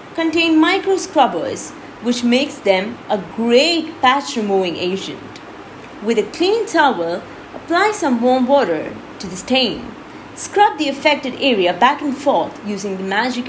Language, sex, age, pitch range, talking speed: English, female, 30-49, 220-320 Hz, 135 wpm